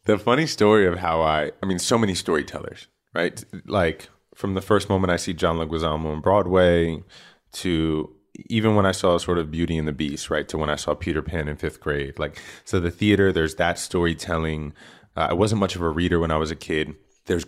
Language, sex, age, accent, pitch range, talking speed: English, male, 20-39, American, 80-95 Hz, 220 wpm